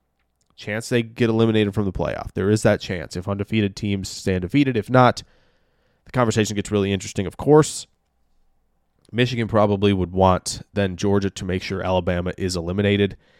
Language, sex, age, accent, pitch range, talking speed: English, male, 20-39, American, 90-110 Hz, 165 wpm